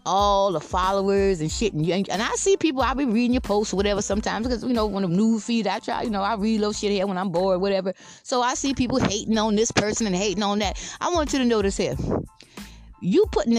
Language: English